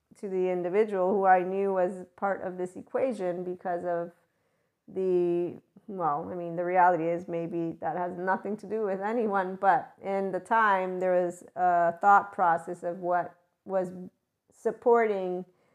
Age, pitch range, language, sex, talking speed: 40-59, 180-210 Hz, English, female, 155 wpm